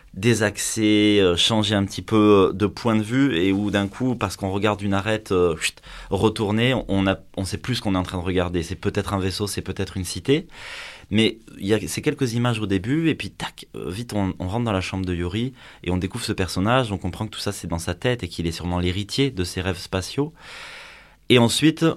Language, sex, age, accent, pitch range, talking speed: French, male, 20-39, French, 90-110 Hz, 240 wpm